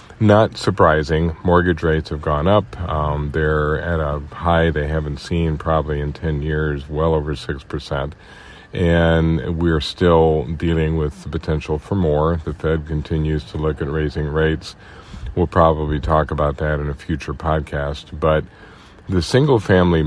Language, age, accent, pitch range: English, 50-69, American, 75-85 Hz